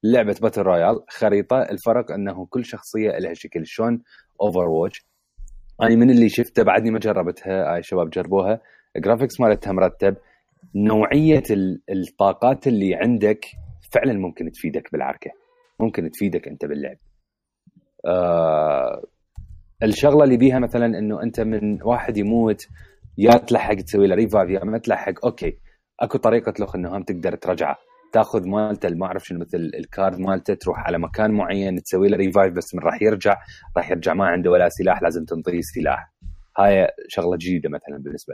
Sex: male